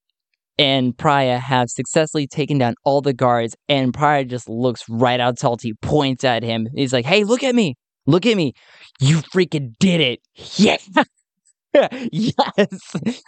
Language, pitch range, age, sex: English, 125-160 Hz, 10-29, male